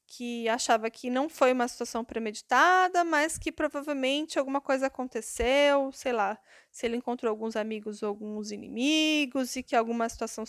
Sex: female